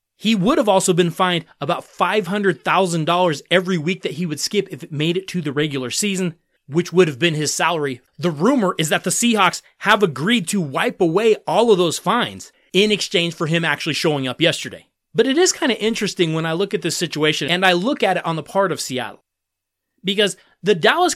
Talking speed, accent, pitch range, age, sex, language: 215 wpm, American, 165-225 Hz, 30-49, male, English